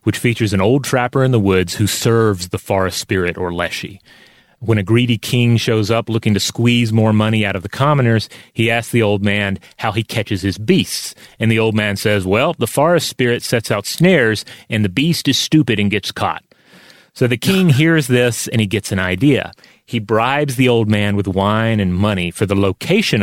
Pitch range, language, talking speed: 100-125 Hz, English, 210 wpm